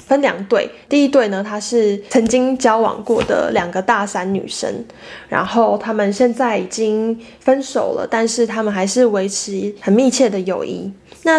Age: 20-39